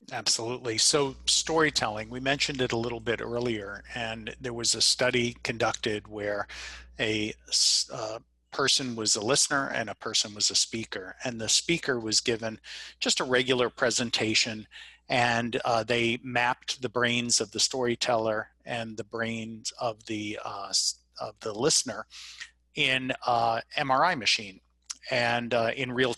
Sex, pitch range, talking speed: male, 110-125 Hz, 145 wpm